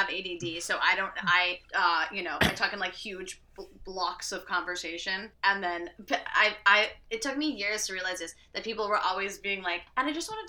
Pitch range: 175-215 Hz